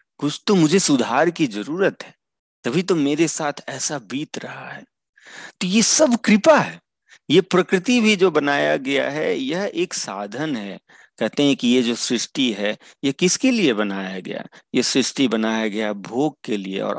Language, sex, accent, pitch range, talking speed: Hindi, male, native, 125-185 Hz, 180 wpm